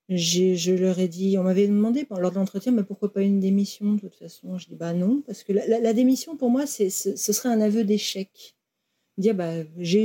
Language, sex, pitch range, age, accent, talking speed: French, female, 180-225 Hz, 40-59, French, 245 wpm